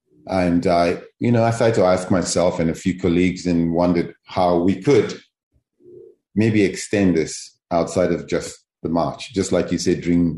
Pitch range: 75-95 Hz